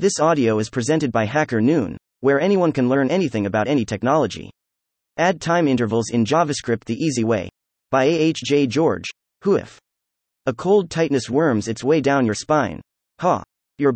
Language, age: English, 30-49